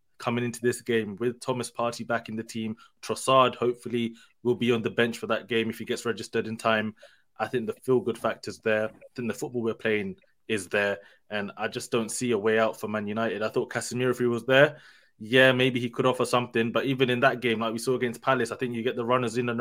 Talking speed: 250 wpm